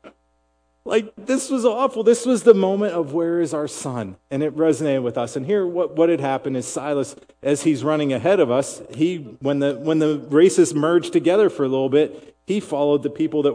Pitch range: 115-155 Hz